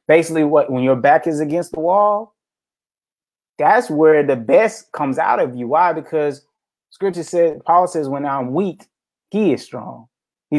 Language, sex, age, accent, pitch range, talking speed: English, male, 20-39, American, 130-165 Hz, 170 wpm